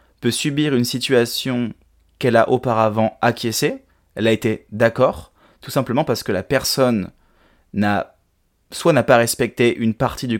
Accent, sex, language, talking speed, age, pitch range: French, male, French, 150 wpm, 20-39, 105-135 Hz